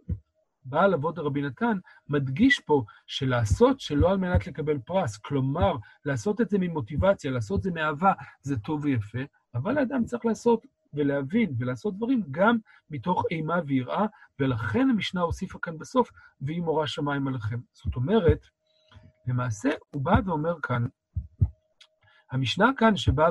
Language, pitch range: Hebrew, 130-200 Hz